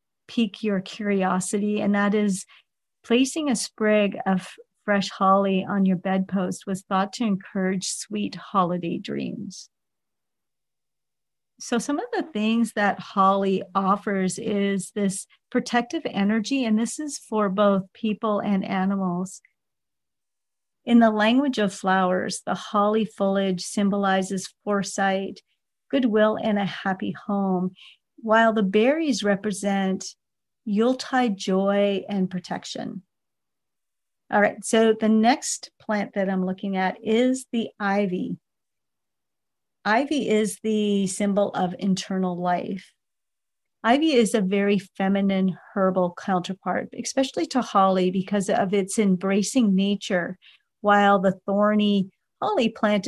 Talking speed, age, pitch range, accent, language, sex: 120 wpm, 50-69, 190-220 Hz, American, English, female